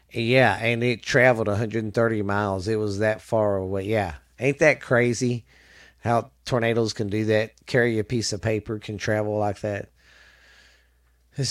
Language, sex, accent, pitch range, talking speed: English, male, American, 100-125 Hz, 155 wpm